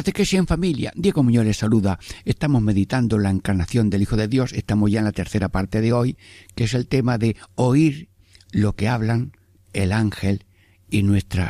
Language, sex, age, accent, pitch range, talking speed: Spanish, male, 60-79, Spanish, 95-110 Hz, 200 wpm